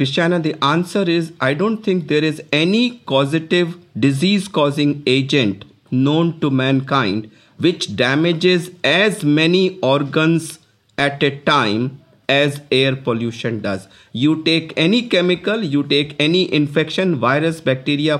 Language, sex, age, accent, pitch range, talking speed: English, male, 50-69, Indian, 135-175 Hz, 130 wpm